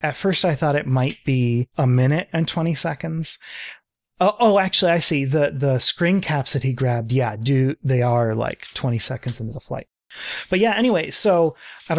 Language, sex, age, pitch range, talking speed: English, male, 30-49, 120-150 Hz, 190 wpm